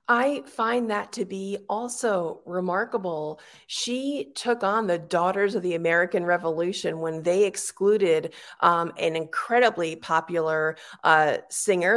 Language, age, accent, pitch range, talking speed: English, 40-59, American, 165-225 Hz, 125 wpm